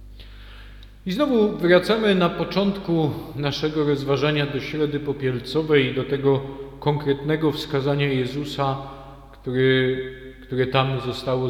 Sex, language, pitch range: male, Polish, 115-140 Hz